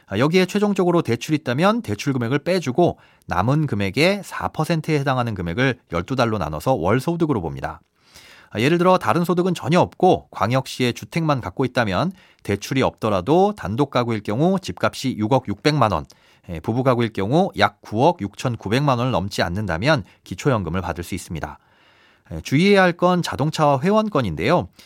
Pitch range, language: 100-165 Hz, Korean